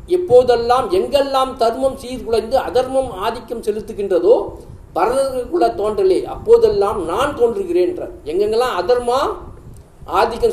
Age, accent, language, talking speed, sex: 50-69, native, Tamil, 90 wpm, male